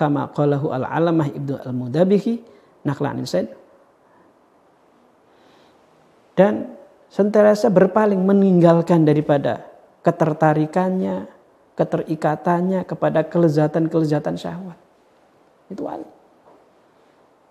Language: Indonesian